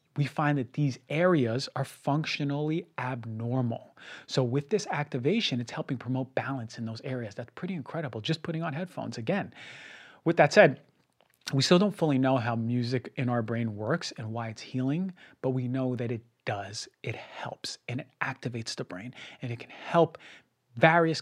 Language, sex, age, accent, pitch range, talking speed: English, male, 30-49, American, 120-145 Hz, 180 wpm